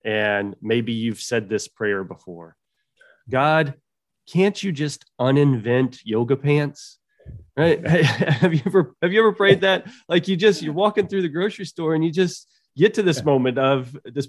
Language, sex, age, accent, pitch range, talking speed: English, male, 30-49, American, 125-170 Hz, 170 wpm